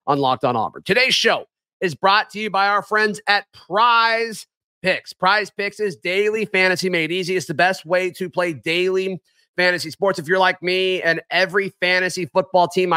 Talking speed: 190 wpm